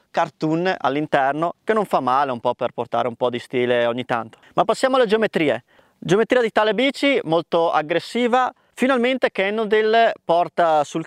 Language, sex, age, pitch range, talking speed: Italian, male, 20-39, 145-195 Hz, 165 wpm